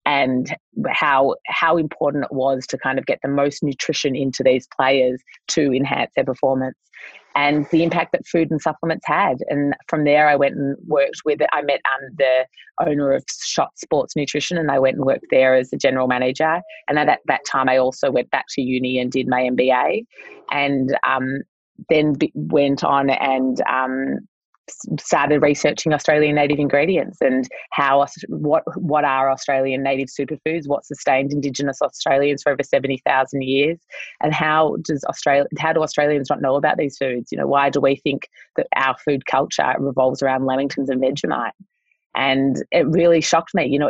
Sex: female